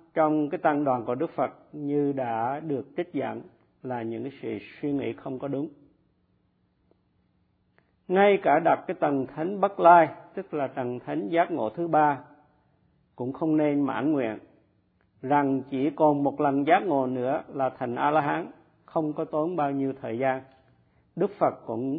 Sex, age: male, 50-69